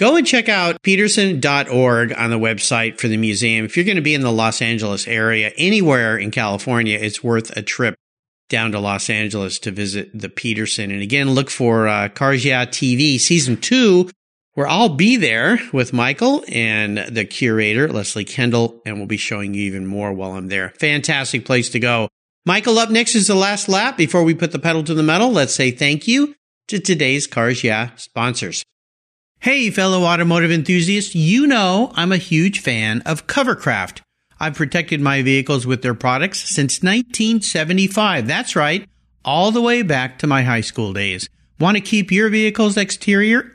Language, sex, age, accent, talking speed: English, male, 50-69, American, 180 wpm